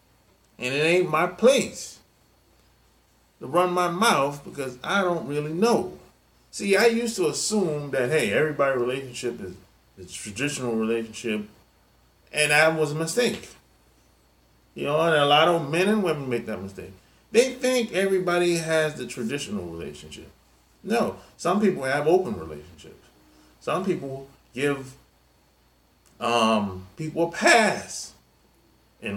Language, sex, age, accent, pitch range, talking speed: English, male, 30-49, American, 120-180 Hz, 135 wpm